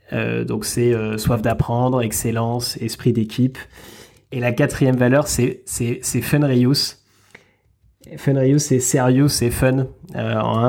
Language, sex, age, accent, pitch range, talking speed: French, male, 20-39, French, 115-135 Hz, 170 wpm